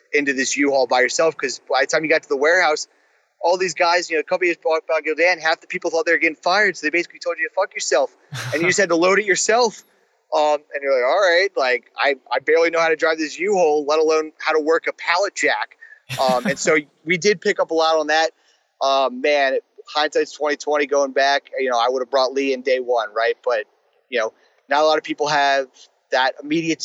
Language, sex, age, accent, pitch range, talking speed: English, male, 30-49, American, 135-185 Hz, 255 wpm